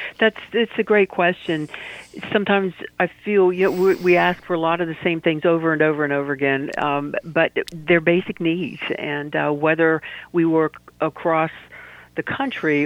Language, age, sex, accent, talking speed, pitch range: English, 50-69, female, American, 180 wpm, 150-170 Hz